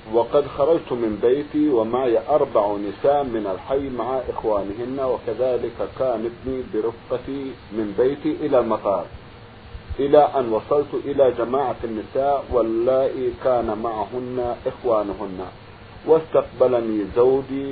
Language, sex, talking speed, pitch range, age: Arabic, male, 100 wpm, 115-145 Hz, 50-69